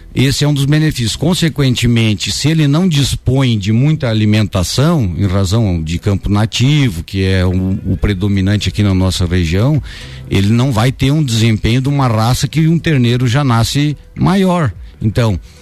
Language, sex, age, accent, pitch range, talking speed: Portuguese, male, 60-79, Brazilian, 95-130 Hz, 165 wpm